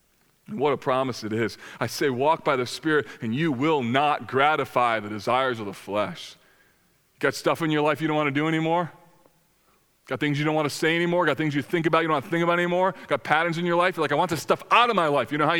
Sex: male